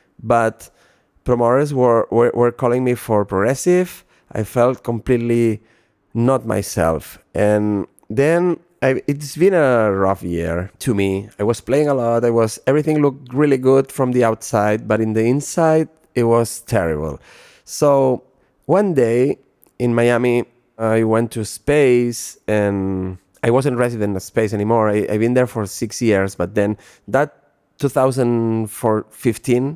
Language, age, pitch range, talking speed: English, 30-49, 100-125 Hz, 145 wpm